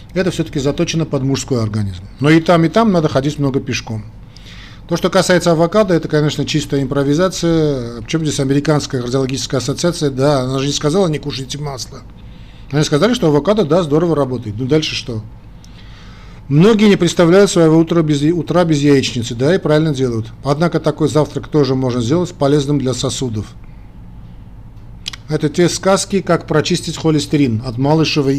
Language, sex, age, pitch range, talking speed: Russian, male, 40-59, 125-150 Hz, 160 wpm